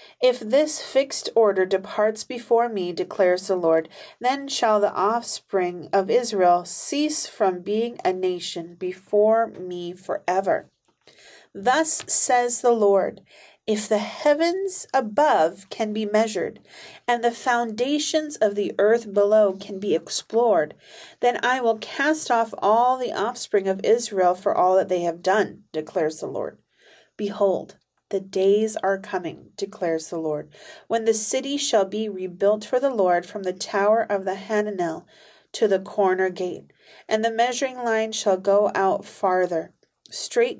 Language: English